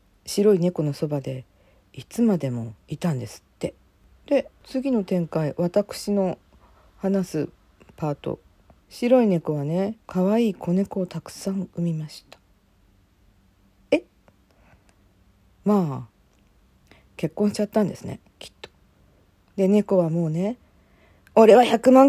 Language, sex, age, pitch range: Japanese, female, 40-59, 125-210 Hz